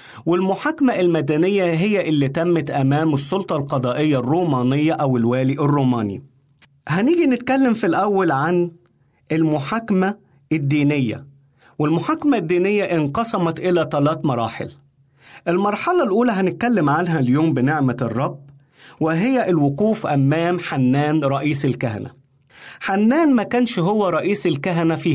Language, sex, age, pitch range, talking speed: Arabic, male, 40-59, 135-185 Hz, 105 wpm